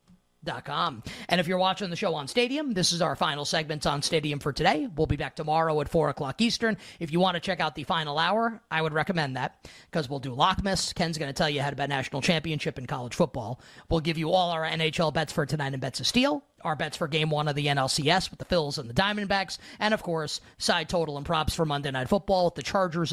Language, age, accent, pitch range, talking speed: English, 30-49, American, 145-190 Hz, 255 wpm